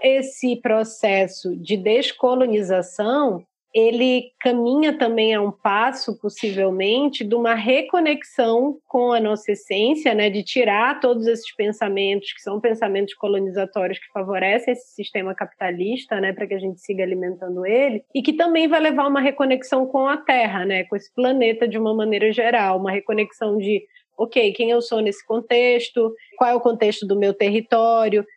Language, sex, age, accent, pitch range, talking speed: Portuguese, female, 20-39, Brazilian, 210-265 Hz, 160 wpm